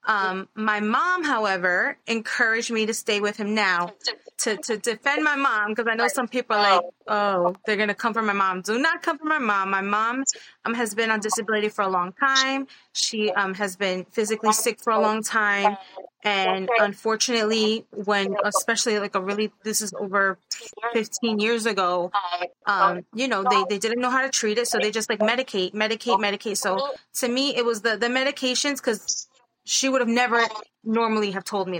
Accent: American